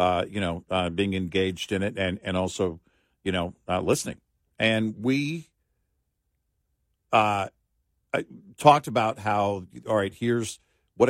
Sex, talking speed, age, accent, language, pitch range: male, 135 wpm, 50-69, American, English, 90-120 Hz